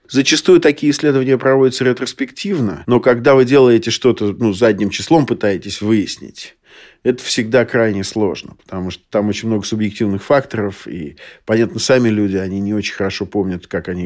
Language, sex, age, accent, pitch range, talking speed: Russian, male, 50-69, native, 105-125 Hz, 160 wpm